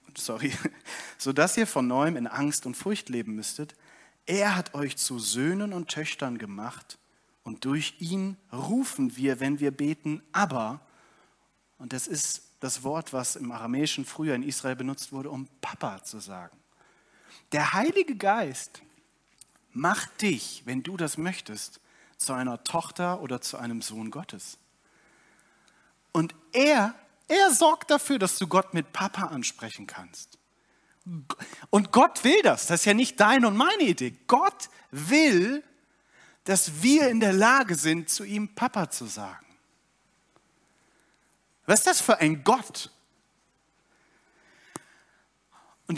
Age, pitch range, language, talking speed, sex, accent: 40-59, 140-210 Hz, German, 140 wpm, male, German